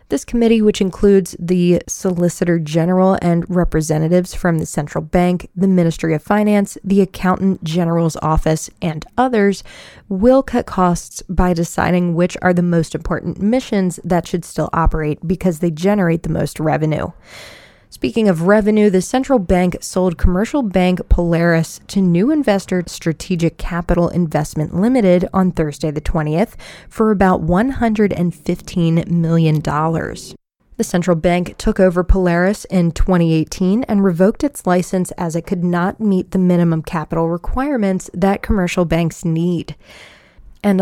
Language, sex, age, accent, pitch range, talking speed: English, female, 20-39, American, 170-200 Hz, 140 wpm